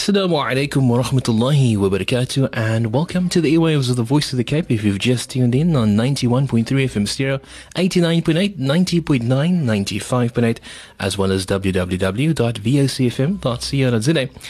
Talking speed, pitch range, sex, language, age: 130 wpm, 105-150 Hz, male, English, 30-49